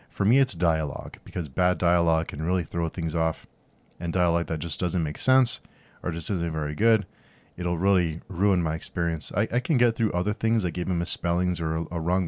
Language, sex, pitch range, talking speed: English, male, 85-100 Hz, 210 wpm